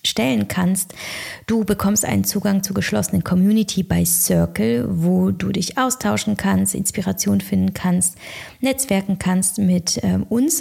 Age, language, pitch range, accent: 20-39, German, 180-210 Hz, German